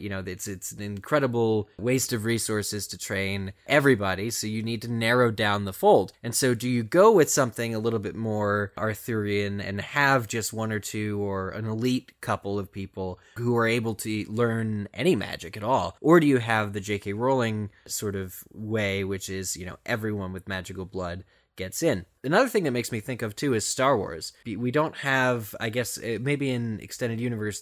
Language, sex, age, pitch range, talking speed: English, male, 20-39, 100-120 Hz, 200 wpm